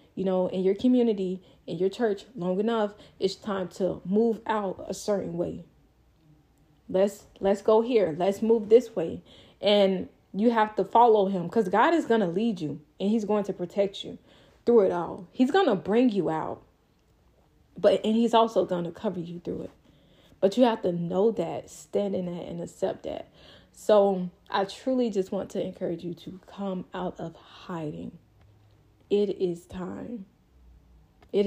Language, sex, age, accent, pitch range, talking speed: English, female, 20-39, American, 175-210 Hz, 175 wpm